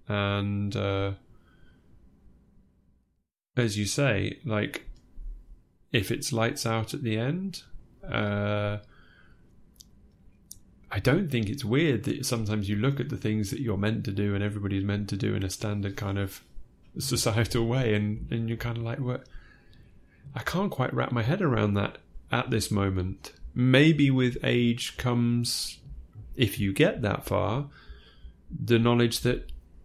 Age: 30-49